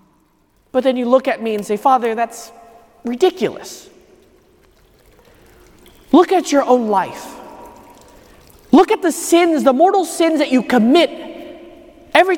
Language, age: English, 30-49